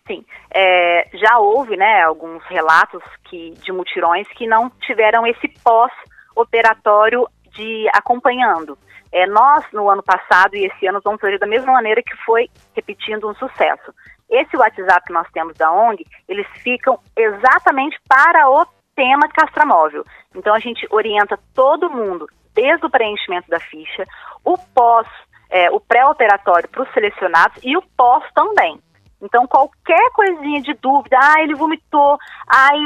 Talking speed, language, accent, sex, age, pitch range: 140 wpm, Portuguese, Brazilian, female, 30-49, 195-290 Hz